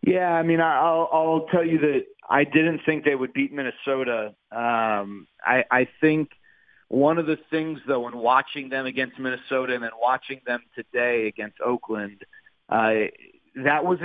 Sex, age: male, 30-49